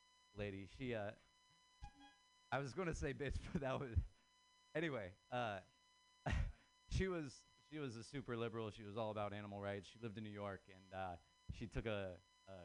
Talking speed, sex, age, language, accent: 180 wpm, male, 30-49, English, American